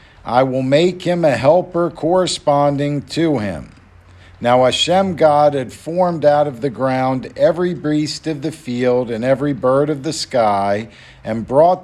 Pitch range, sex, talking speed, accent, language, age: 125-160 Hz, male, 155 wpm, American, English, 50-69